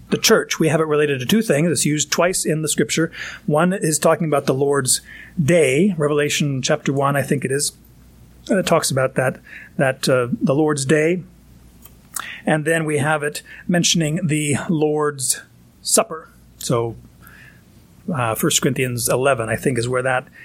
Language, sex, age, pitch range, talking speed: English, male, 30-49, 140-170 Hz, 170 wpm